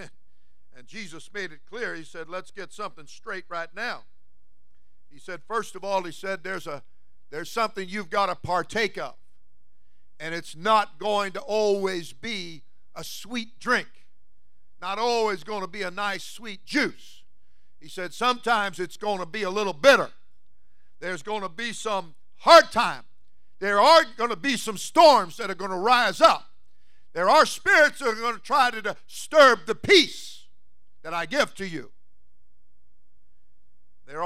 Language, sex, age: English, male, 50-69